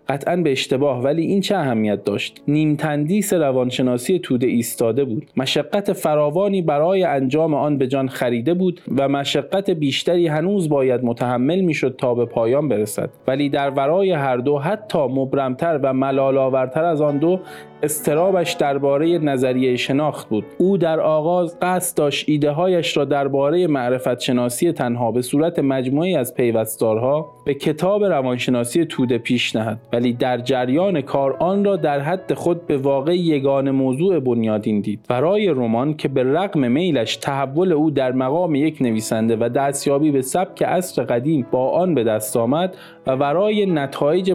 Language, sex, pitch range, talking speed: Persian, male, 130-170 Hz, 155 wpm